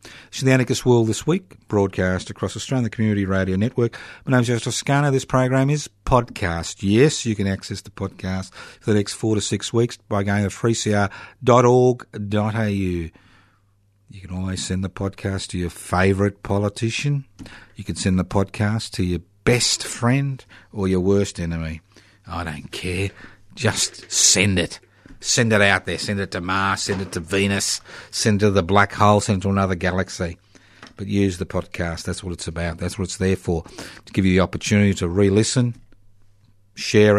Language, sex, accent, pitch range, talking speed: English, male, Australian, 95-110 Hz, 180 wpm